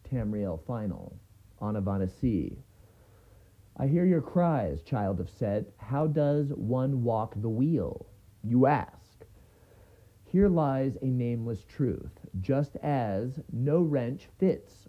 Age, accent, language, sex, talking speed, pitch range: 40-59, American, English, male, 115 wpm, 100-130 Hz